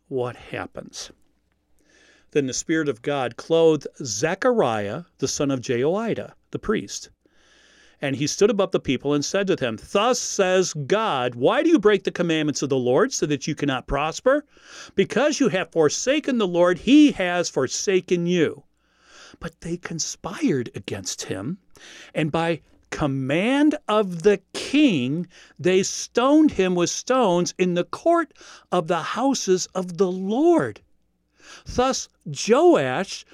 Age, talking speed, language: 50-69, 140 wpm, English